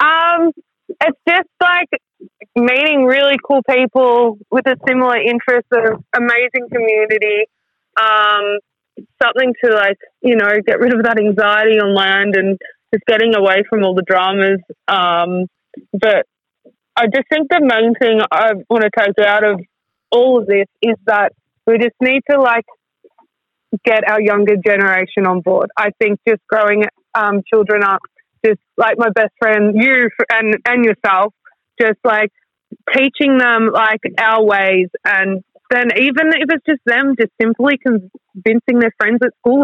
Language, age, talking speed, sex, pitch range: English, 20-39, 155 wpm, female, 200-245 Hz